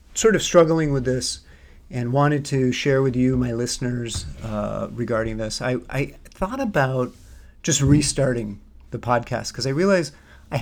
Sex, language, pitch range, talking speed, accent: male, English, 110-145 Hz, 160 wpm, American